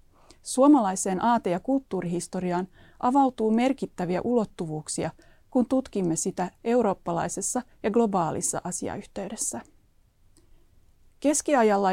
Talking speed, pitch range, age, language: 75 wpm, 185-240 Hz, 30-49, Finnish